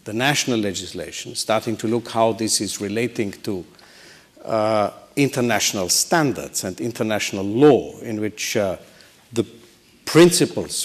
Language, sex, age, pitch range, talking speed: English, male, 50-69, 115-130 Hz, 120 wpm